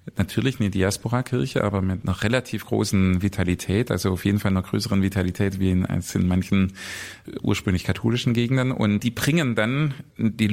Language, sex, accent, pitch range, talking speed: German, male, German, 95-115 Hz, 165 wpm